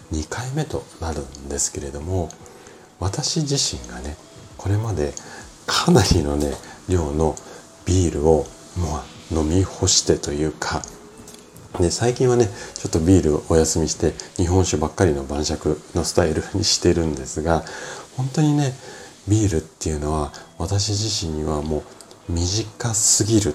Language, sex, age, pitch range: Japanese, male, 40-59, 75-105 Hz